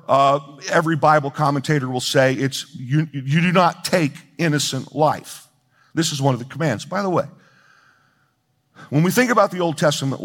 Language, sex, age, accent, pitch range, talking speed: English, male, 50-69, American, 135-160 Hz, 175 wpm